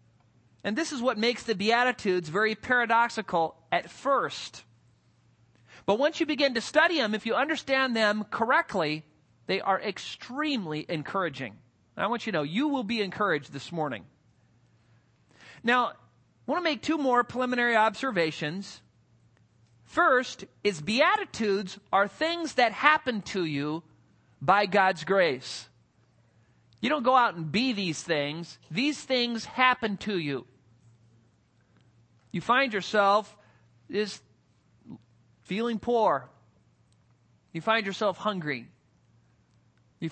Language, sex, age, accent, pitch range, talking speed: English, male, 40-59, American, 145-240 Hz, 125 wpm